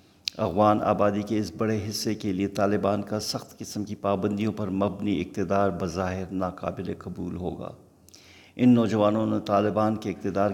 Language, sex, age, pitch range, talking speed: Urdu, male, 50-69, 95-105 Hz, 155 wpm